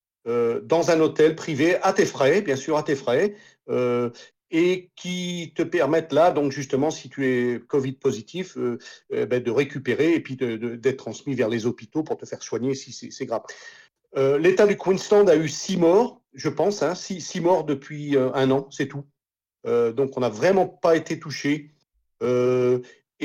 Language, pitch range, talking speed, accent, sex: French, 135-180 Hz, 195 wpm, French, male